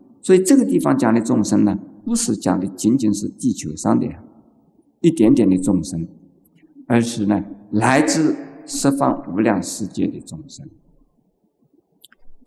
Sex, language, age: male, Chinese, 50-69